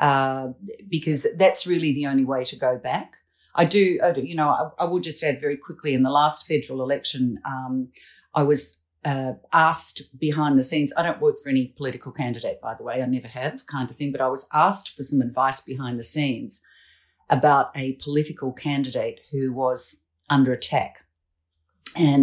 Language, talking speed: English, 190 wpm